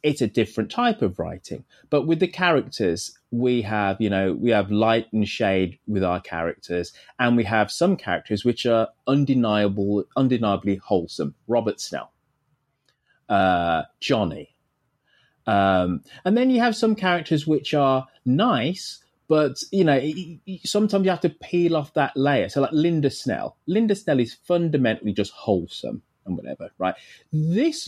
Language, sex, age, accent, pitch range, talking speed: English, male, 20-39, British, 95-145 Hz, 155 wpm